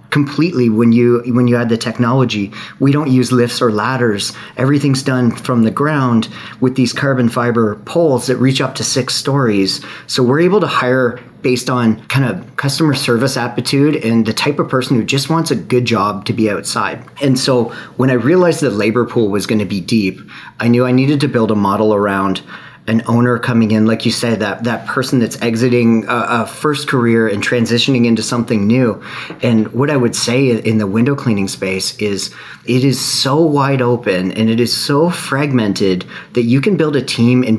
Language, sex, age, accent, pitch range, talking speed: English, male, 40-59, American, 110-130 Hz, 205 wpm